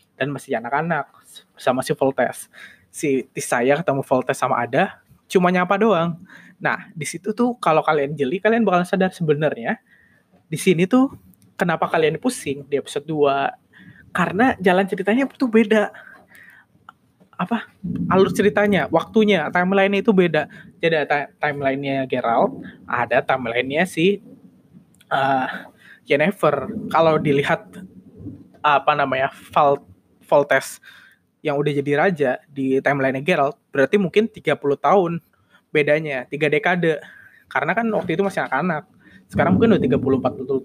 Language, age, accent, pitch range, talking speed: Indonesian, 20-39, native, 140-200 Hz, 130 wpm